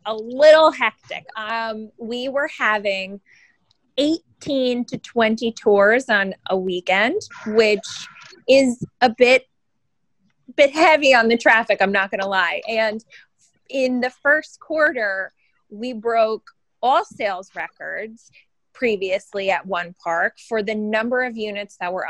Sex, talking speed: female, 135 wpm